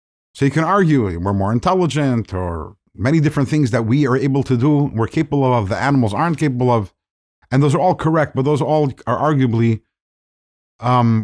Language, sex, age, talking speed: English, male, 50-69, 200 wpm